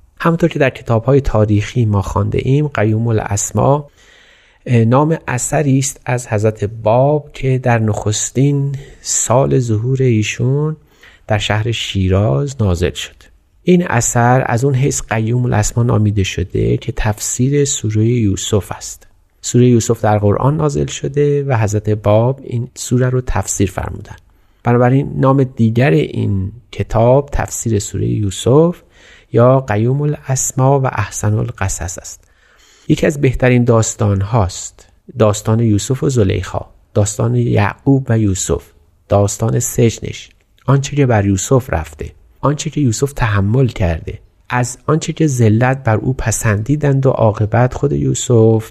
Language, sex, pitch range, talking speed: Persian, male, 105-130 Hz, 130 wpm